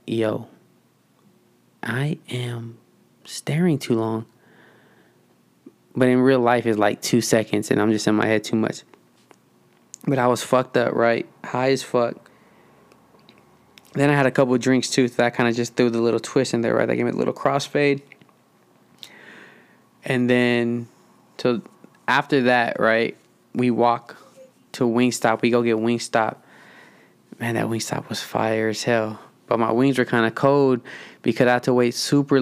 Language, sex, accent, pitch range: English, male, American, 115-130 Hz